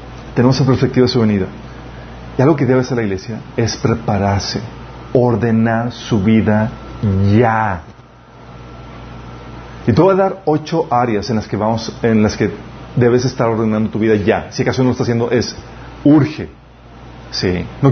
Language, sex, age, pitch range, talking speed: Spanish, male, 40-59, 105-130 Hz, 165 wpm